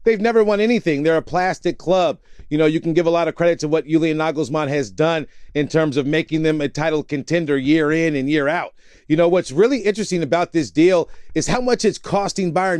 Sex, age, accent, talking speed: male, 40-59, American, 235 wpm